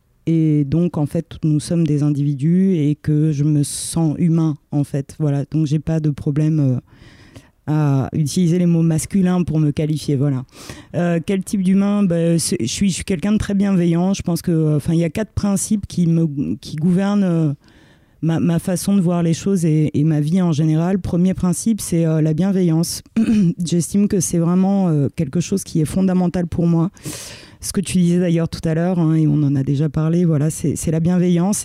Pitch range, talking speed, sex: 155-185 Hz, 210 wpm, female